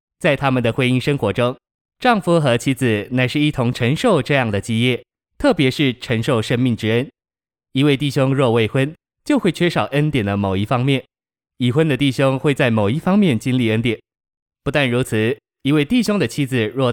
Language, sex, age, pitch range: Chinese, male, 20-39, 115-150 Hz